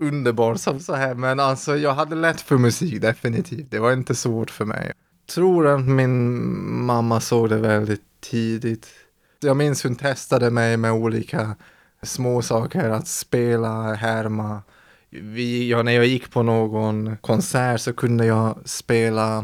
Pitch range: 115-135 Hz